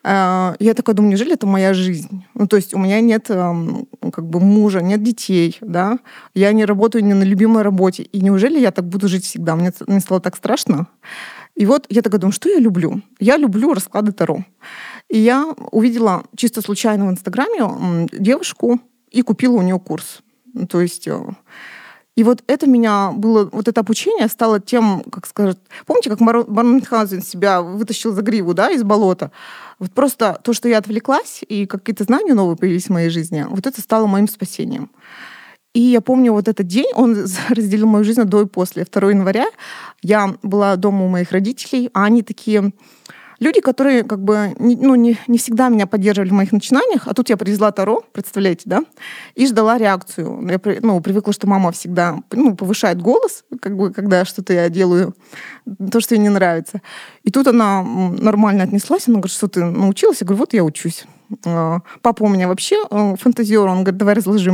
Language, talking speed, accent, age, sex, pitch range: Russian, 180 wpm, native, 20-39, female, 190-235 Hz